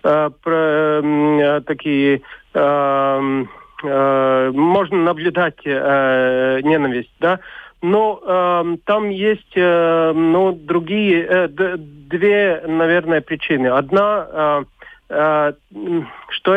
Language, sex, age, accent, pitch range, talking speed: Russian, male, 40-59, native, 145-175 Hz, 85 wpm